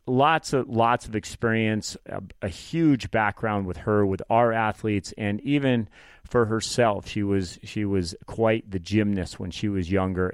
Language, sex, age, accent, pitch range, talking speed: English, male, 30-49, American, 95-110 Hz, 170 wpm